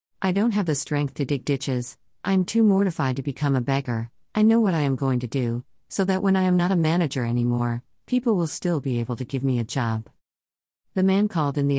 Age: 50-69